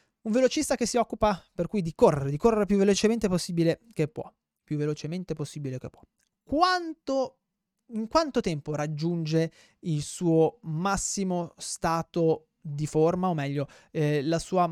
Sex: male